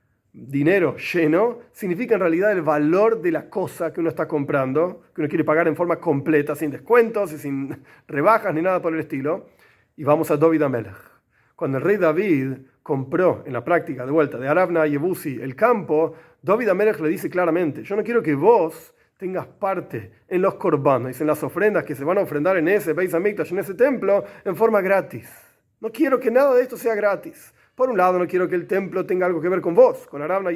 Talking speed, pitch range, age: 215 wpm, 150-210 Hz, 40-59